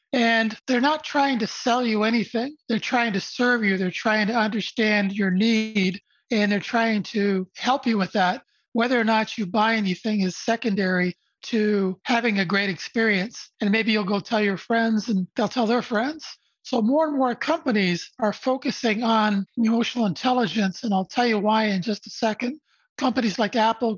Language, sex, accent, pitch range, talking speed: English, male, American, 205-245 Hz, 185 wpm